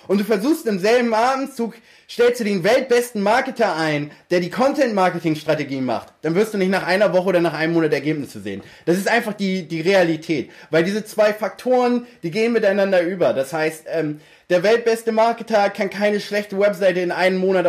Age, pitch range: 20-39, 170-225 Hz